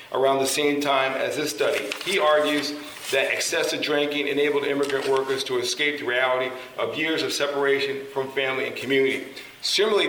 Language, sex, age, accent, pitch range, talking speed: English, male, 40-59, American, 130-155 Hz, 165 wpm